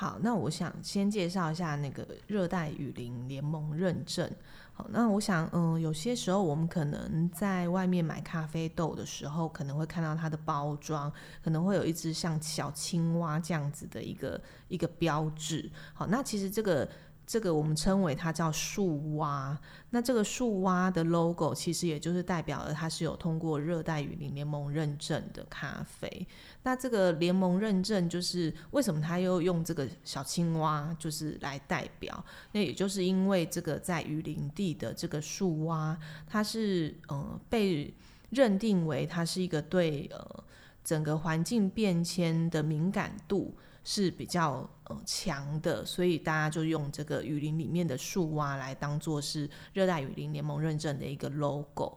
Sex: female